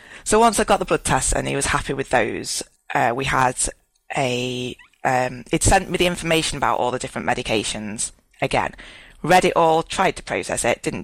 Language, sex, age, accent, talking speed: English, female, 20-39, British, 200 wpm